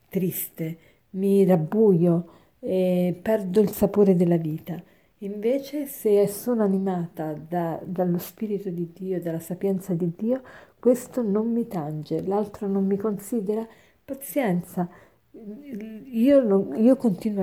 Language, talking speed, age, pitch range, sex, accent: Italian, 120 wpm, 50-69, 175-210 Hz, female, native